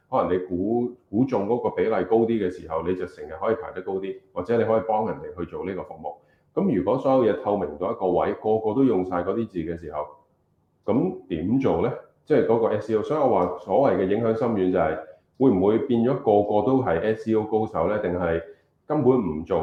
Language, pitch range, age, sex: Chinese, 90-120 Hz, 30-49, male